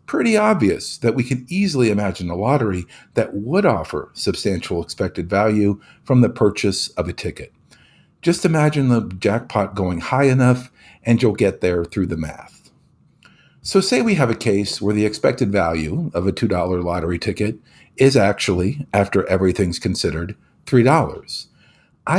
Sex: male